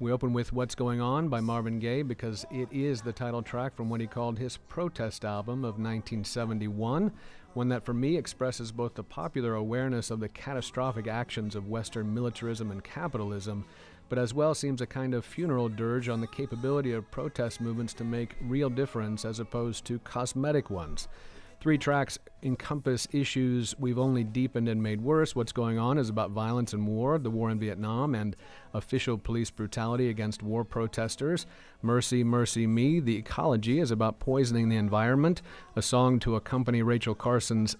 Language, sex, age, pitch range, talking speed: English, male, 50-69, 115-130 Hz, 175 wpm